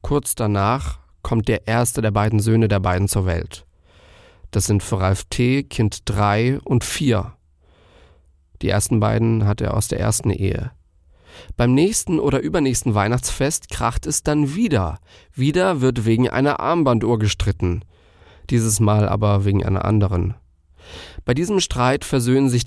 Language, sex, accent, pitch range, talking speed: German, male, German, 90-125 Hz, 150 wpm